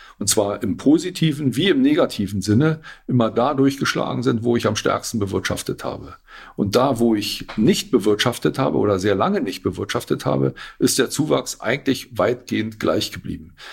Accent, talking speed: German, 165 wpm